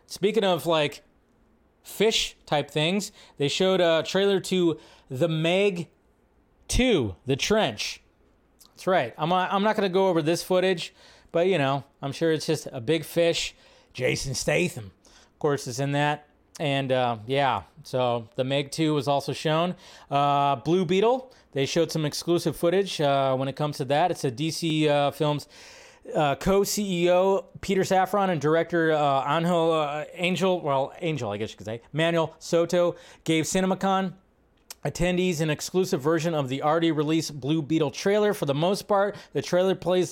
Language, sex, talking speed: English, male, 170 wpm